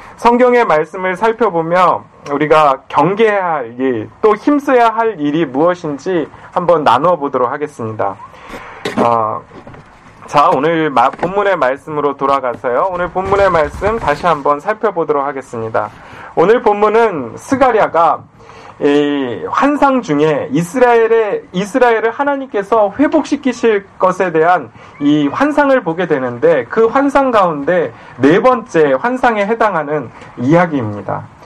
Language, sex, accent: Korean, male, native